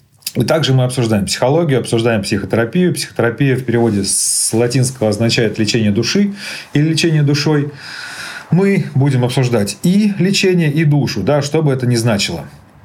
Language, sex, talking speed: Russian, male, 140 wpm